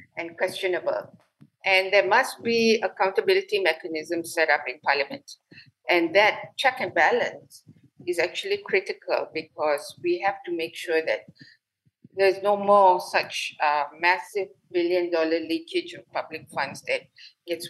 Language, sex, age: English, female, 50-69